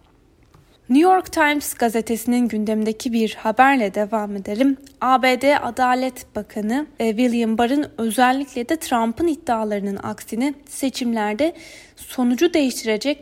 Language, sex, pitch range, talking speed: Turkish, female, 215-275 Hz, 100 wpm